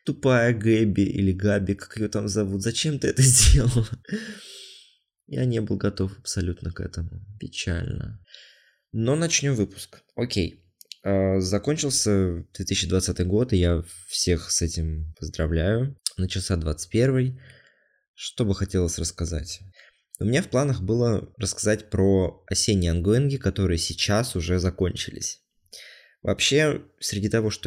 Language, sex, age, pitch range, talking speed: Russian, male, 20-39, 90-115 Hz, 130 wpm